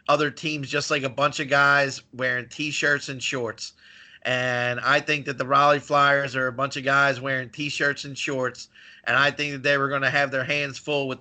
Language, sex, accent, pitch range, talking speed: English, male, American, 130-160 Hz, 220 wpm